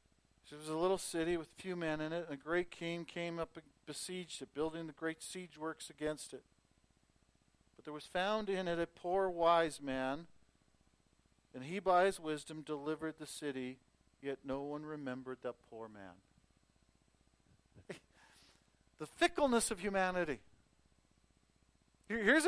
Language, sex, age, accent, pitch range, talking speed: English, male, 50-69, American, 130-200 Hz, 150 wpm